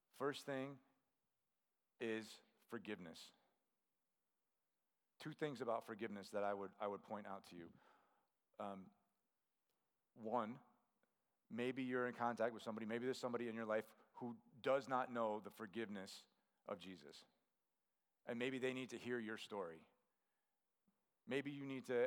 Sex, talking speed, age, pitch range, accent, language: male, 140 wpm, 40-59, 110-130 Hz, American, English